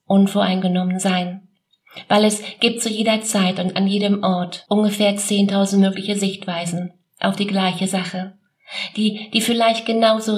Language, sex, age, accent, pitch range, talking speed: German, female, 30-49, German, 175-205 Hz, 140 wpm